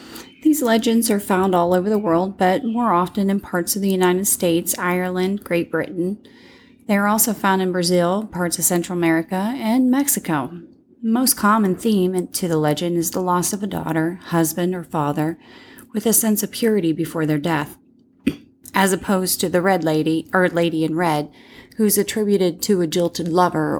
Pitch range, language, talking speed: 165-210 Hz, English, 180 wpm